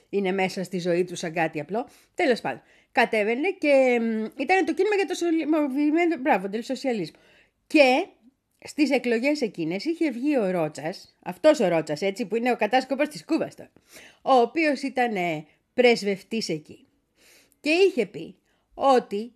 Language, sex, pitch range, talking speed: Greek, female, 200-315 Hz, 145 wpm